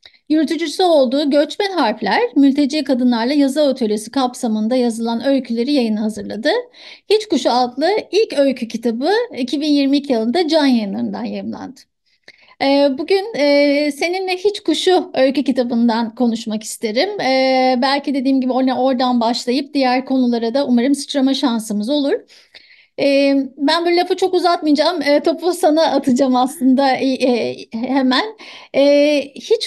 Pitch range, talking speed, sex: 250-295 Hz, 120 wpm, female